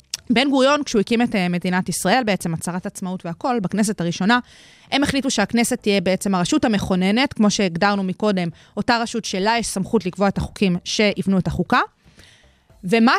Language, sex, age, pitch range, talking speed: Hebrew, female, 20-39, 200-265 Hz, 160 wpm